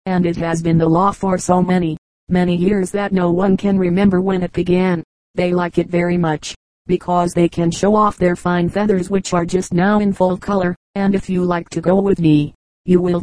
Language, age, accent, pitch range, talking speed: English, 40-59, American, 175-200 Hz, 220 wpm